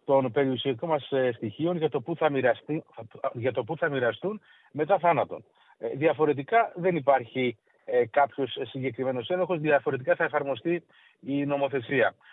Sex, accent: male, native